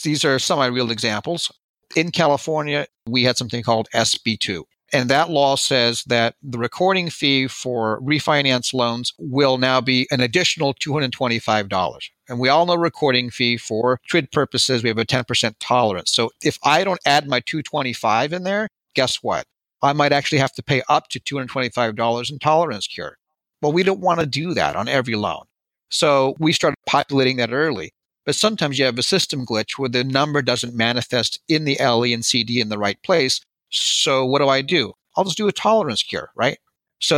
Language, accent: English, American